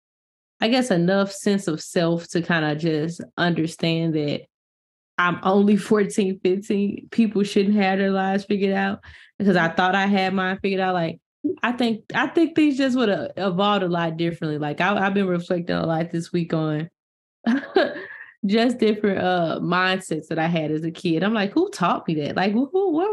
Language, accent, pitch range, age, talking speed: English, American, 160-200 Hz, 10-29, 190 wpm